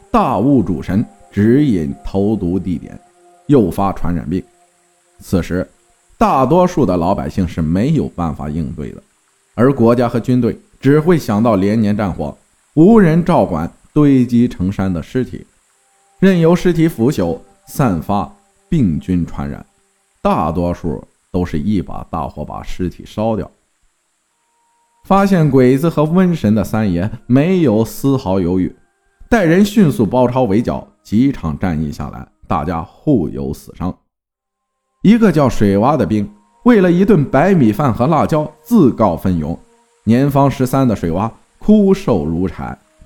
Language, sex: Chinese, male